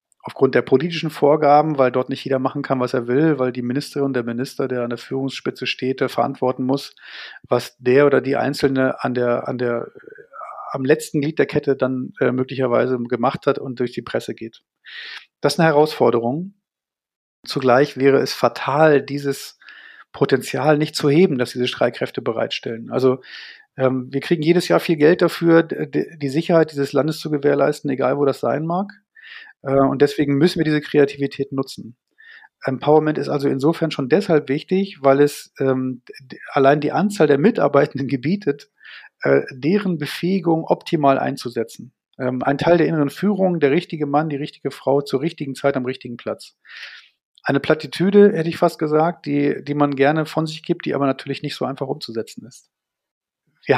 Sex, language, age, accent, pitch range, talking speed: male, German, 40-59, German, 130-160 Hz, 170 wpm